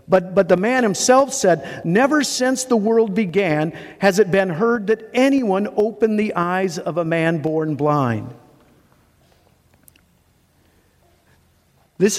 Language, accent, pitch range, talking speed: English, American, 160-200 Hz, 130 wpm